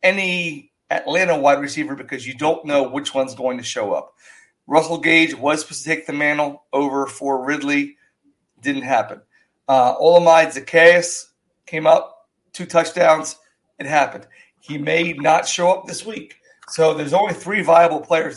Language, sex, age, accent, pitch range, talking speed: English, male, 40-59, American, 145-170 Hz, 160 wpm